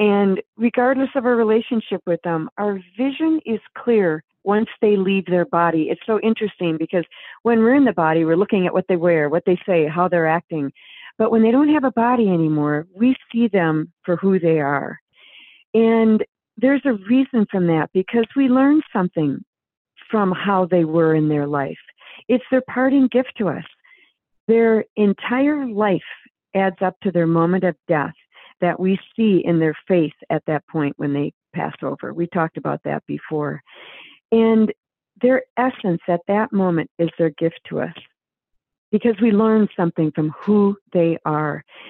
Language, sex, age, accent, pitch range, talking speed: English, female, 40-59, American, 165-225 Hz, 175 wpm